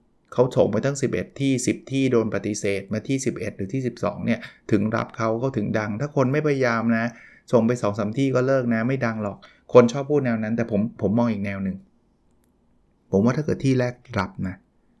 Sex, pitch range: male, 115-145 Hz